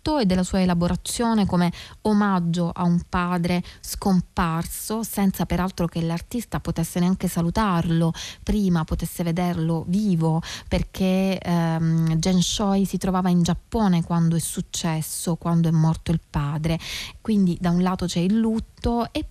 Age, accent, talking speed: 20-39, native, 140 wpm